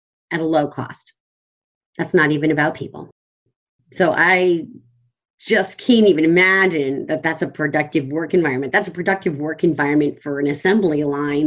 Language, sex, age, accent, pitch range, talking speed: English, female, 30-49, American, 145-190 Hz, 155 wpm